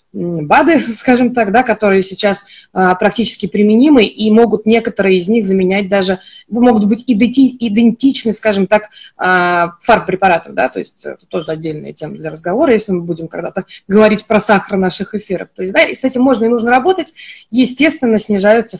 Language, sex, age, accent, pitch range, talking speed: Russian, female, 20-39, native, 185-225 Hz, 170 wpm